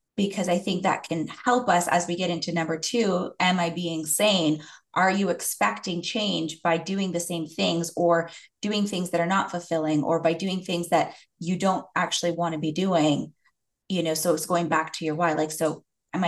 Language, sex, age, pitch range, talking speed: English, female, 20-39, 165-185 Hz, 210 wpm